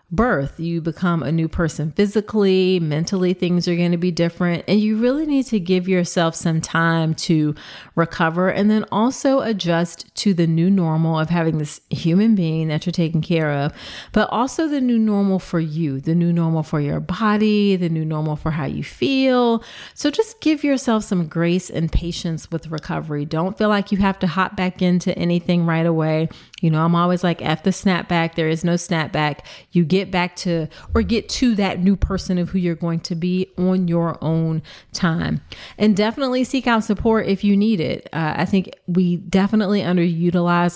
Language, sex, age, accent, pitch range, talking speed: English, female, 40-59, American, 160-195 Hz, 195 wpm